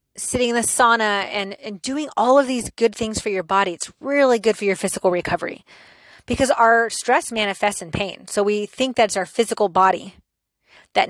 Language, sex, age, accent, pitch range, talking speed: English, female, 30-49, American, 185-225 Hz, 195 wpm